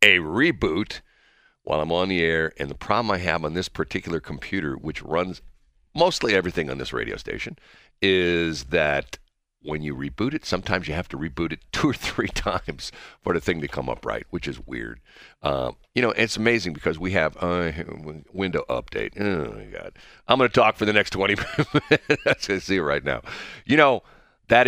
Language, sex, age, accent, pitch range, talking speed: English, male, 50-69, American, 75-100 Hz, 195 wpm